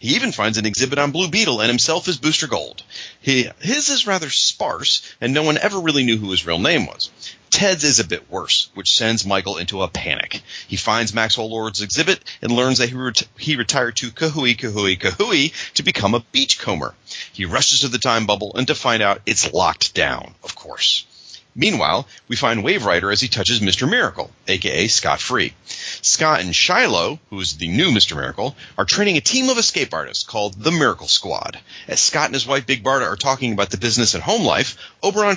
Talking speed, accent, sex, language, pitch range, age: 210 wpm, American, male, English, 105-155 Hz, 40-59